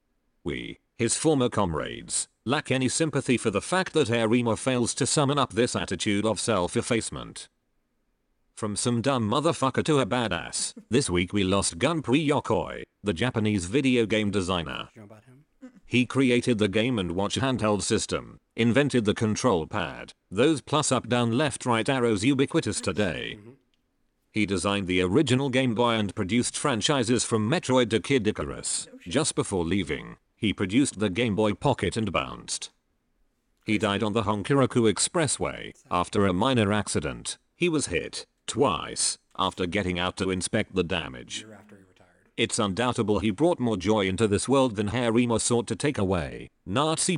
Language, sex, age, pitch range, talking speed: English, male, 40-59, 105-130 Hz, 155 wpm